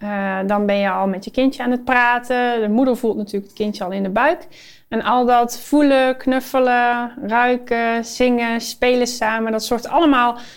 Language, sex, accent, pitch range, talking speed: Dutch, female, Dutch, 205-260 Hz, 185 wpm